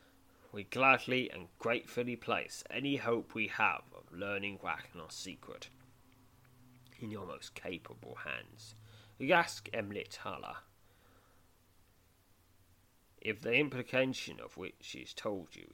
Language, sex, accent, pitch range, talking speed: English, male, British, 95-120 Hz, 120 wpm